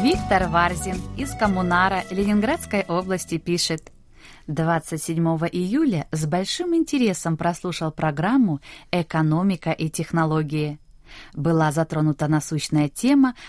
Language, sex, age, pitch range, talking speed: Russian, female, 20-39, 160-215 Hz, 95 wpm